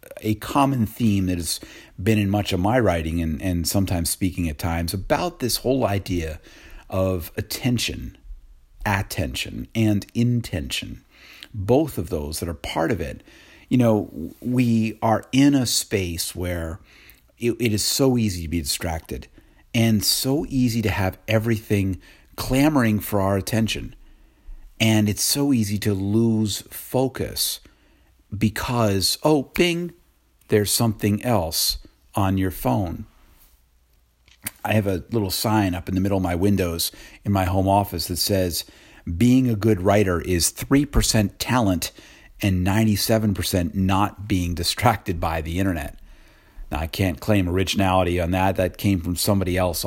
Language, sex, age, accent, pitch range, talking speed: English, male, 50-69, American, 90-110 Hz, 145 wpm